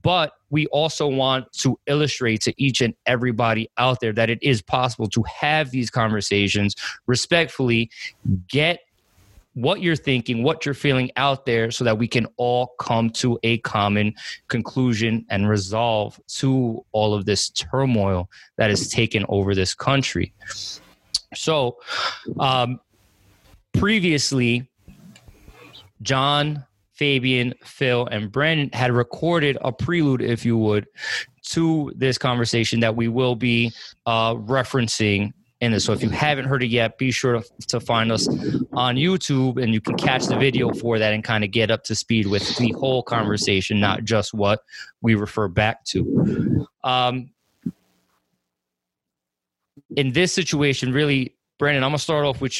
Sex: male